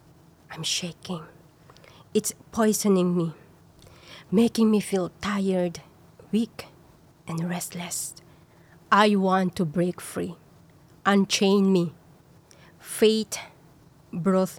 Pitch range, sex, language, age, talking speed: 175-205 Hz, female, English, 20-39, 85 wpm